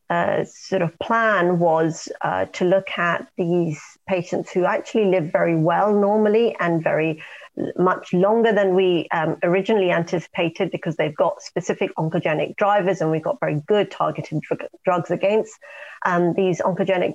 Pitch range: 175-205 Hz